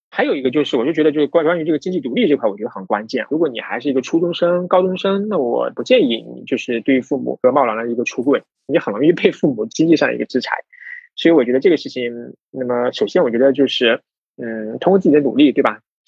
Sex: male